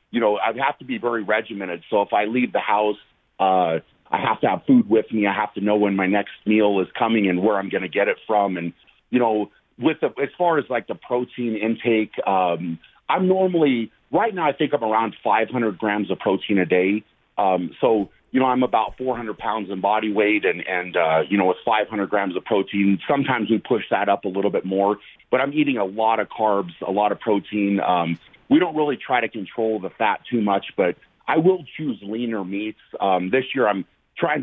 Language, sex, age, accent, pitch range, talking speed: English, male, 40-59, American, 95-115 Hz, 230 wpm